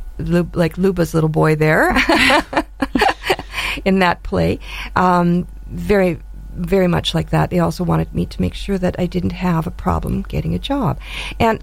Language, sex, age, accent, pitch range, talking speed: English, female, 50-69, American, 150-195 Hz, 160 wpm